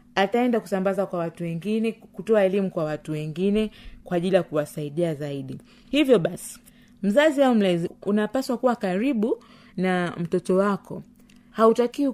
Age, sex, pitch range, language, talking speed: 30-49, female, 185-235 Hz, Swahili, 135 wpm